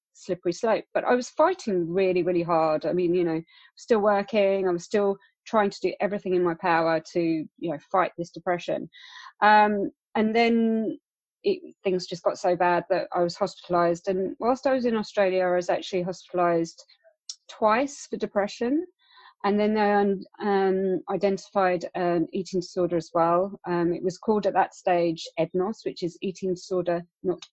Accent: British